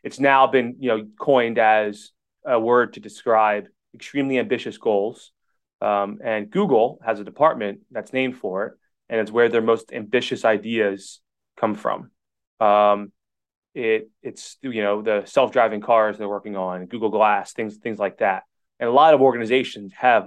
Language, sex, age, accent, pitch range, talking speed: English, male, 20-39, American, 105-125 Hz, 165 wpm